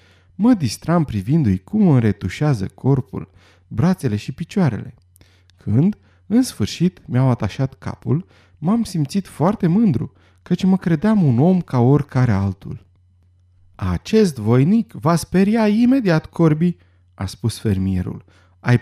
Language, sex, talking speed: Romanian, male, 120 wpm